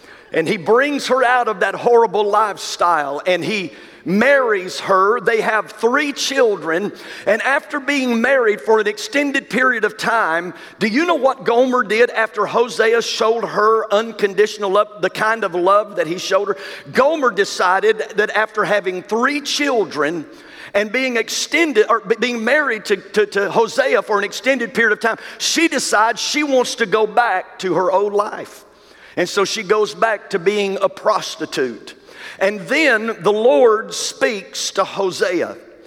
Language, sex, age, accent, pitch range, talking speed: English, male, 50-69, American, 200-260 Hz, 160 wpm